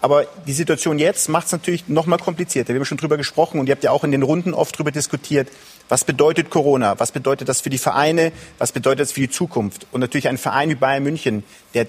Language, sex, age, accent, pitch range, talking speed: German, male, 40-59, German, 135-170 Hz, 245 wpm